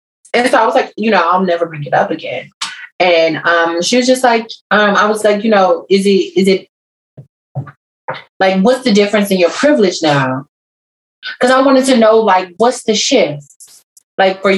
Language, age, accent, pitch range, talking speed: English, 30-49, American, 165-215 Hz, 200 wpm